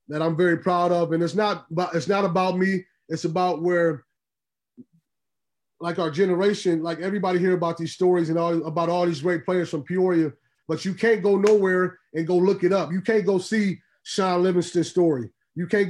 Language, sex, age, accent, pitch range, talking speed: English, male, 30-49, American, 165-185 Hz, 200 wpm